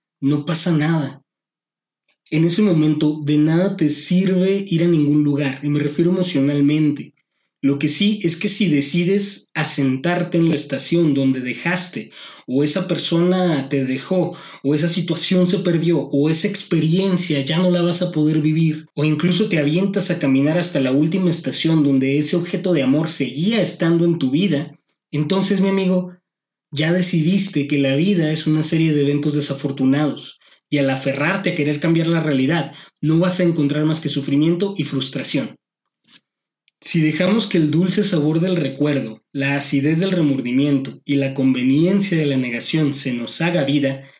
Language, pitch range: Spanish, 145-175 Hz